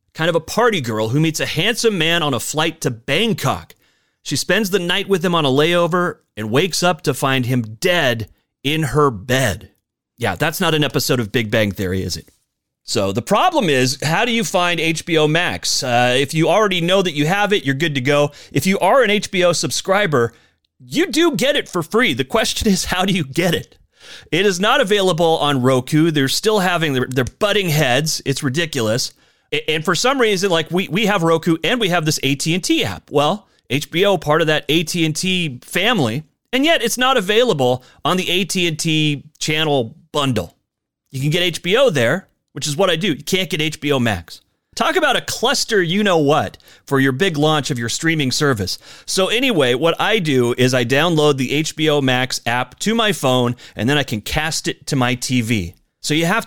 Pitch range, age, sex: 130-180 Hz, 30-49, male